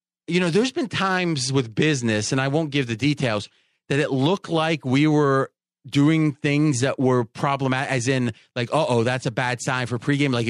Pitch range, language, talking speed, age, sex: 125-155 Hz, English, 205 wpm, 30-49, male